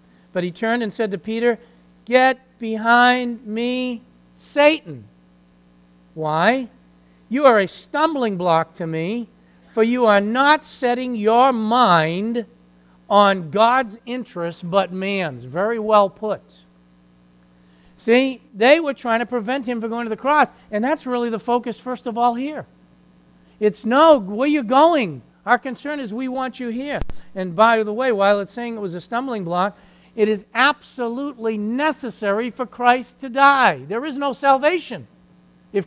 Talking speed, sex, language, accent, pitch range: 155 wpm, male, English, American, 170-245 Hz